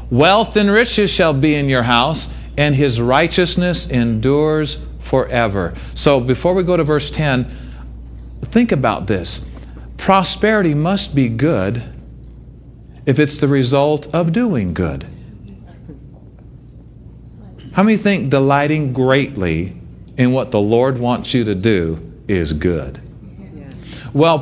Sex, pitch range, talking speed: male, 110-175 Hz, 125 wpm